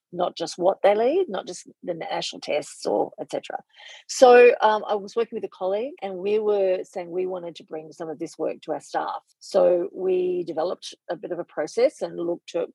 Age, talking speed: 40-59, 215 wpm